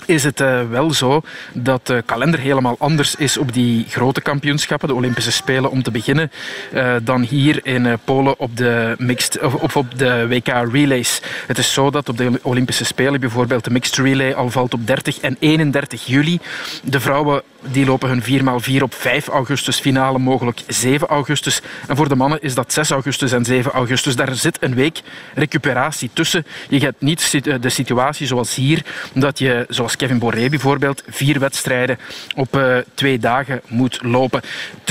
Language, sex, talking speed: Dutch, male, 170 wpm